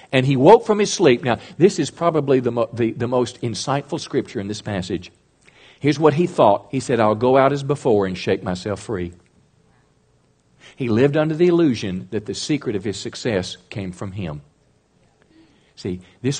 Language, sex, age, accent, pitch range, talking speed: English, male, 50-69, American, 105-145 Hz, 185 wpm